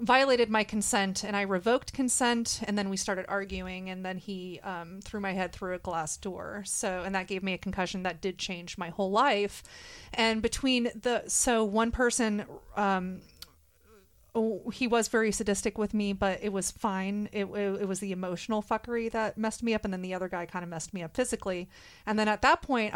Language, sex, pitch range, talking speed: English, female, 190-220 Hz, 210 wpm